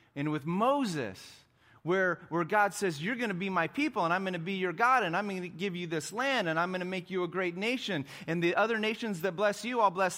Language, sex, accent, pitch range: English, male, American, 115-195 Hz